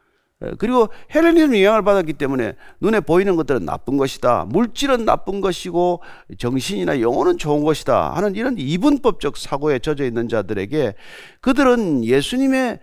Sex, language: male, Korean